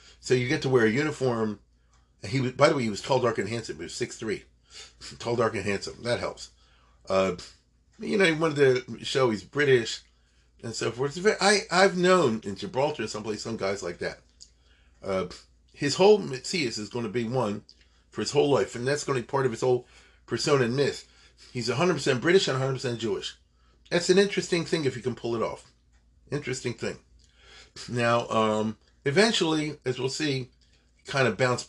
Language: English